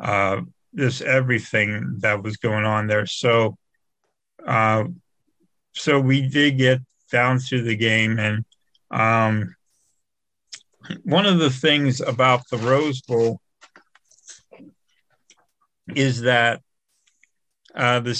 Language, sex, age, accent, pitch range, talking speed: English, male, 50-69, American, 110-130 Hz, 105 wpm